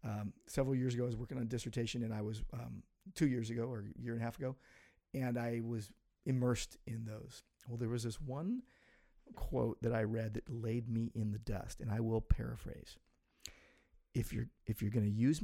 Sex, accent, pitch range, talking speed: male, American, 110-135 Hz, 220 wpm